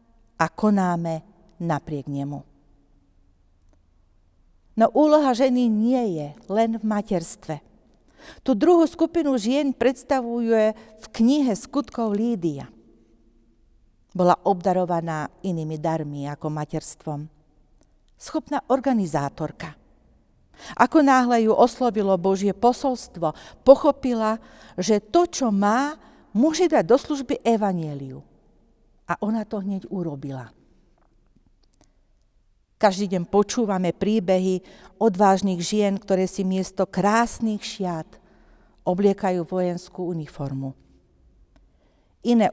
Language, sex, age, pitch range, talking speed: Slovak, female, 50-69, 155-225 Hz, 90 wpm